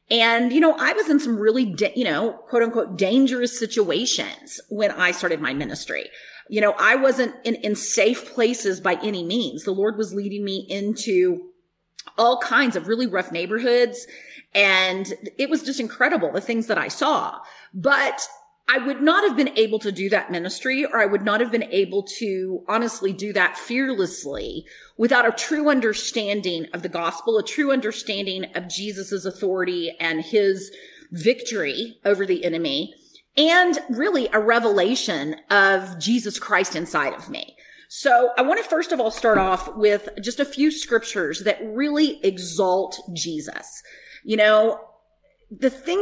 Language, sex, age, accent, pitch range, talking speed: English, female, 30-49, American, 195-250 Hz, 165 wpm